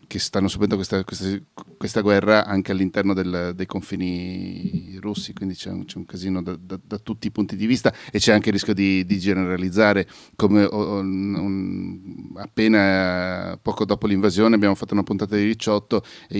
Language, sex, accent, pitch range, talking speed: Italian, male, native, 95-105 Hz, 180 wpm